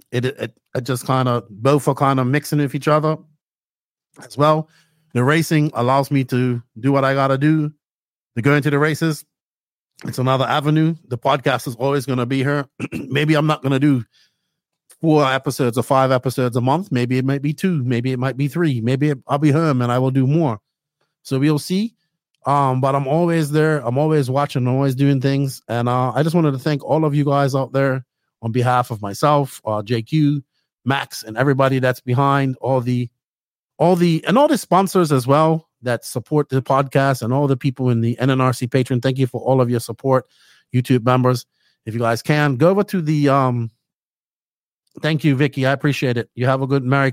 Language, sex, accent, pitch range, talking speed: English, male, American, 125-150 Hz, 210 wpm